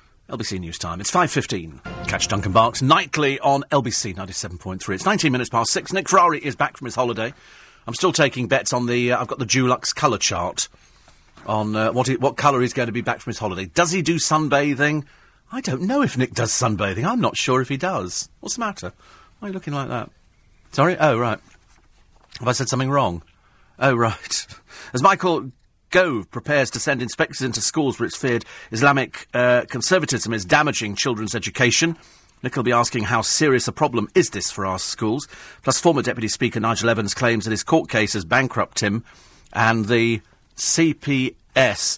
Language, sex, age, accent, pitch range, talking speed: English, male, 40-59, British, 110-145 Hz, 195 wpm